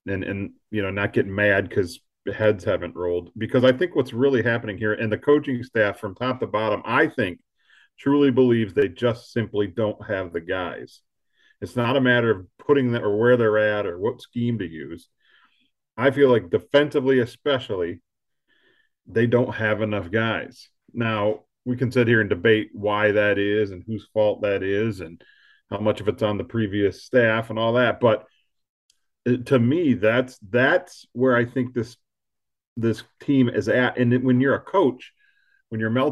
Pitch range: 105-130 Hz